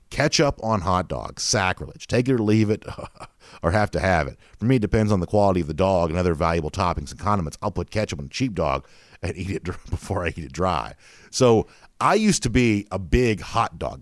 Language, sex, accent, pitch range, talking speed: English, male, American, 85-110 Hz, 235 wpm